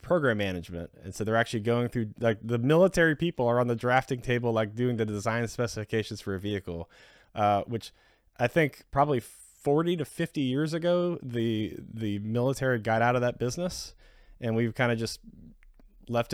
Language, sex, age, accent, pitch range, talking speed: English, male, 20-39, American, 105-130 Hz, 180 wpm